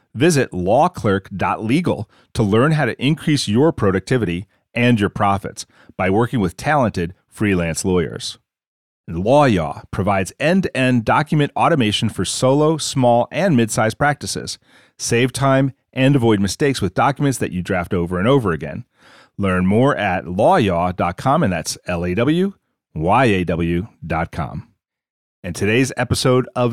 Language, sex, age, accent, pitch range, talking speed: English, male, 40-59, American, 95-125 Hz, 120 wpm